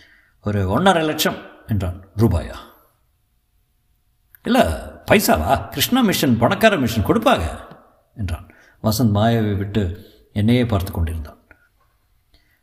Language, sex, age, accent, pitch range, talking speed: Tamil, male, 50-69, native, 95-145 Hz, 85 wpm